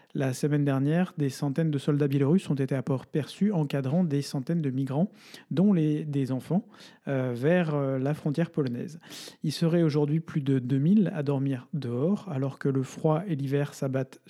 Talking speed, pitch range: 185 wpm, 140-165 Hz